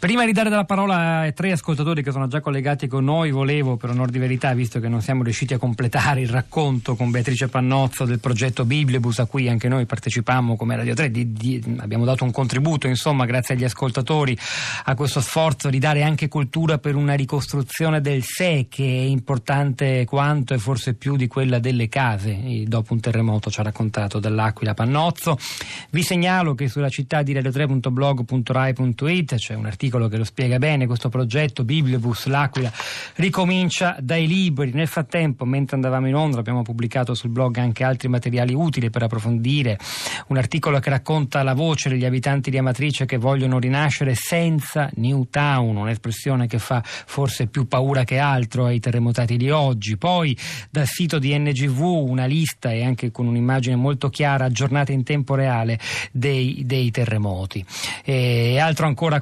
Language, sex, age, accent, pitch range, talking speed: Italian, male, 40-59, native, 125-145 Hz, 170 wpm